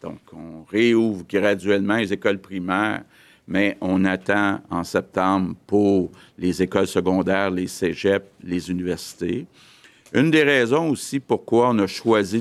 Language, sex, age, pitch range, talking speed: French, male, 50-69, 90-105 Hz, 135 wpm